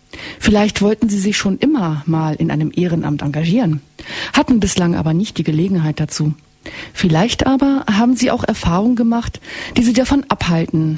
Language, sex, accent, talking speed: German, female, German, 160 wpm